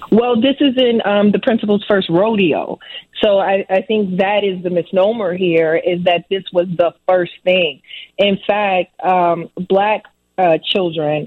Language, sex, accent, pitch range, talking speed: English, female, American, 170-205 Hz, 165 wpm